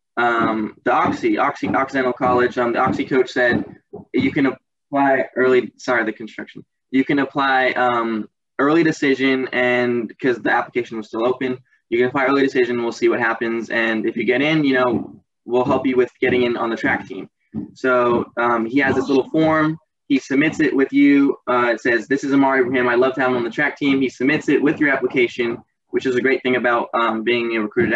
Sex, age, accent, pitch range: male, 20-39, American, 120-145 Hz